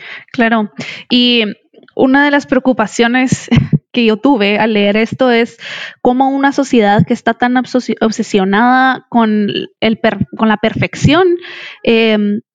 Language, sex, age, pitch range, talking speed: Spanish, female, 20-39, 225-260 Hz, 125 wpm